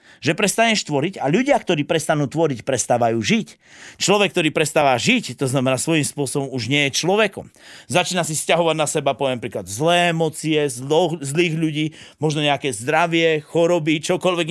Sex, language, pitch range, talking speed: male, Slovak, 145-215 Hz, 155 wpm